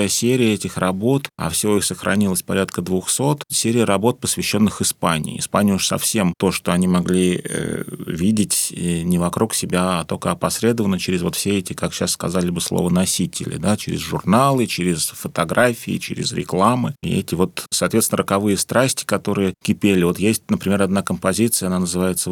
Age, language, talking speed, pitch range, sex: 30-49, Russian, 160 wpm, 90-105 Hz, male